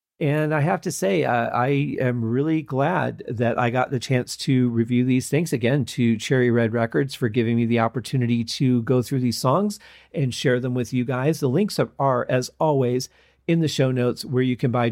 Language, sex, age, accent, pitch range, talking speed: English, male, 40-59, American, 120-145 Hz, 215 wpm